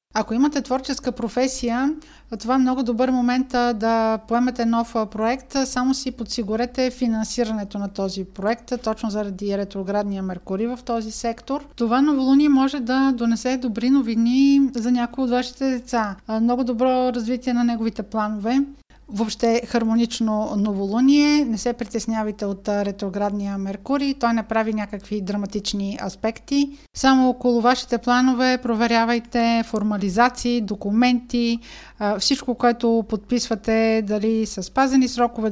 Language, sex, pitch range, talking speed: Bulgarian, female, 220-260 Hz, 125 wpm